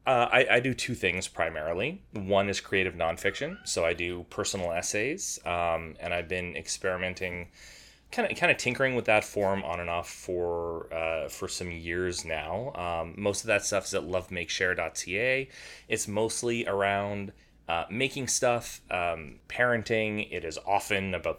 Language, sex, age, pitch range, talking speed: English, male, 30-49, 85-110 Hz, 155 wpm